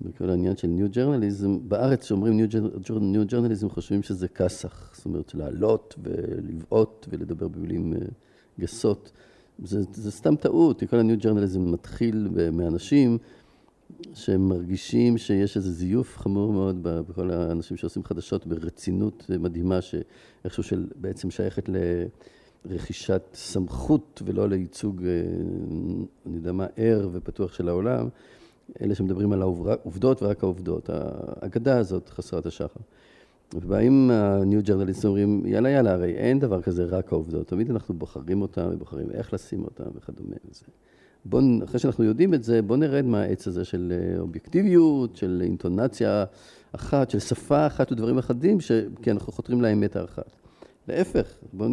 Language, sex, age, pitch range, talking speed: Hebrew, male, 50-69, 90-120 Hz, 135 wpm